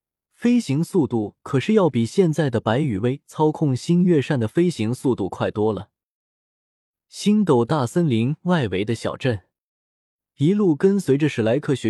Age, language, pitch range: 20-39, Chinese, 110-155 Hz